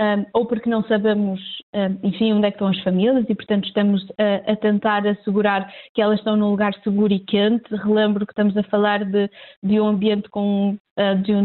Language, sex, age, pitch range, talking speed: Portuguese, female, 20-39, 205-225 Hz, 195 wpm